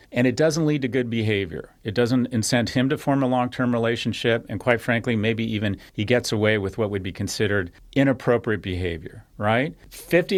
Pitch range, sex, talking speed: 105-135 Hz, male, 190 wpm